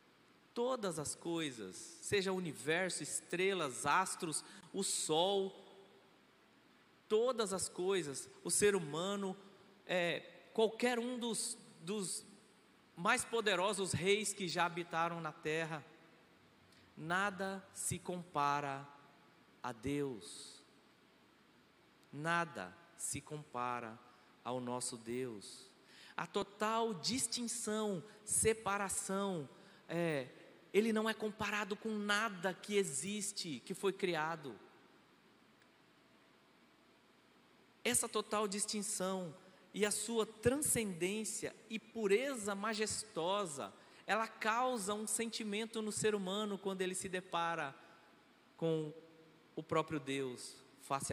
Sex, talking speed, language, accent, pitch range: male, 95 wpm, Portuguese, Brazilian, 160-210 Hz